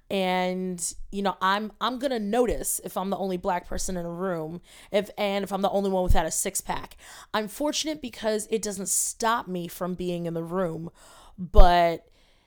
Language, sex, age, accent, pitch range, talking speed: English, female, 20-39, American, 185-220 Hz, 195 wpm